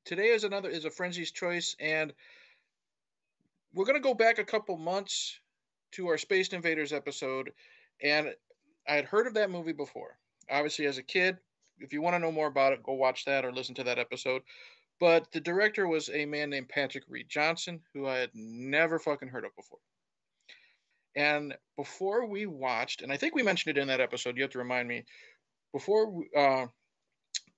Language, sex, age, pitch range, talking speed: English, male, 50-69, 135-175 Hz, 190 wpm